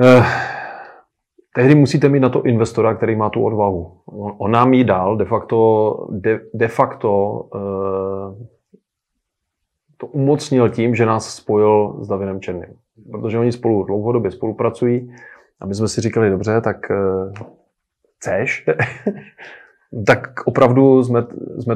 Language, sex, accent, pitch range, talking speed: Czech, male, native, 110-125 Hz, 130 wpm